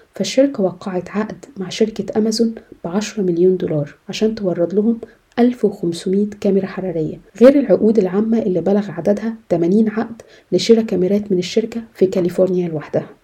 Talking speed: 135 wpm